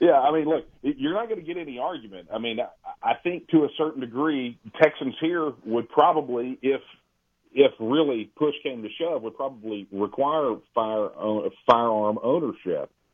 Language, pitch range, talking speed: English, 110-155 Hz, 175 wpm